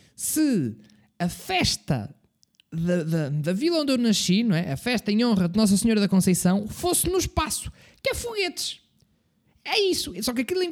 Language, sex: Portuguese, male